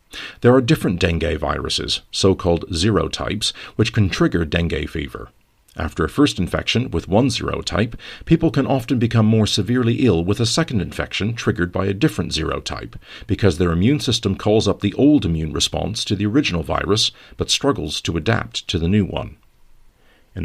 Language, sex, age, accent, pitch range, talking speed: English, male, 50-69, American, 85-110 Hz, 170 wpm